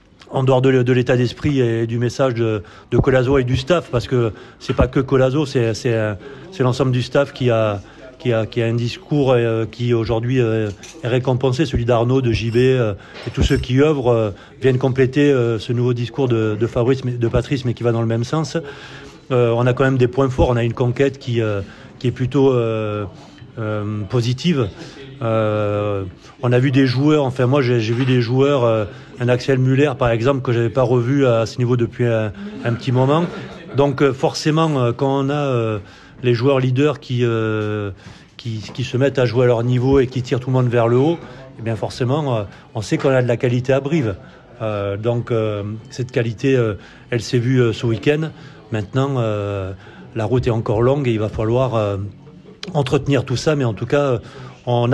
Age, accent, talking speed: 30-49, French, 200 wpm